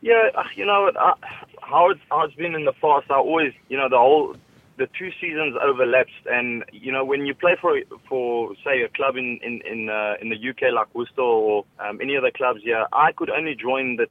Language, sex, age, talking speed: English, male, 20-39, 215 wpm